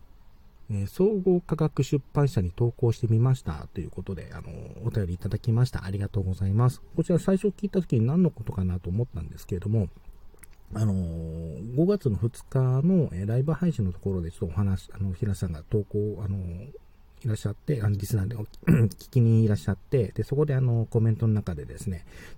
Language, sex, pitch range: Japanese, male, 95-120 Hz